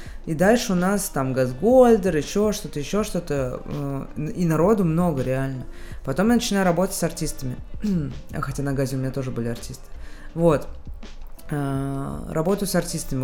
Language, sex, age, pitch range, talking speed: Russian, female, 20-39, 130-170 Hz, 160 wpm